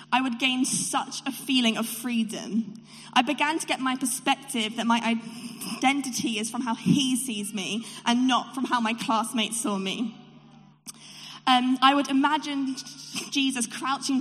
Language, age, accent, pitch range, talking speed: English, 20-39, British, 225-265 Hz, 155 wpm